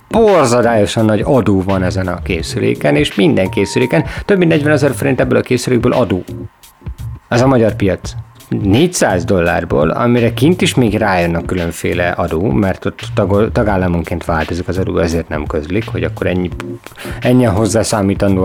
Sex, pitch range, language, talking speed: male, 105-130 Hz, Hungarian, 155 wpm